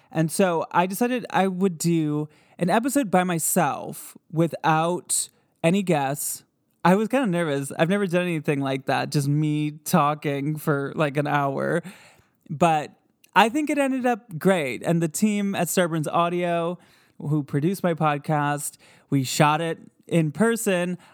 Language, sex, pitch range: English, male, 150-190 Hz